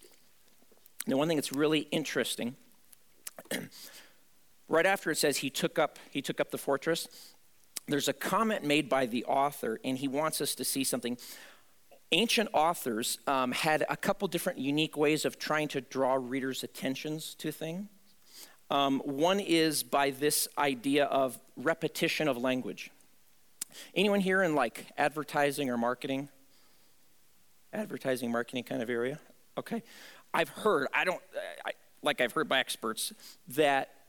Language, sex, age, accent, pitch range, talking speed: English, male, 50-69, American, 135-175 Hz, 145 wpm